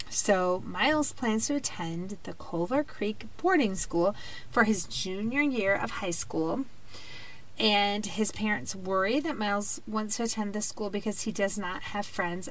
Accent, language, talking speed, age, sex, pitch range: American, English, 165 wpm, 30-49, female, 190-260 Hz